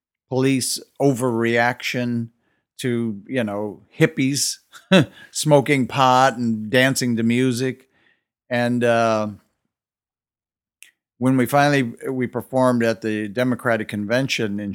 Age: 50-69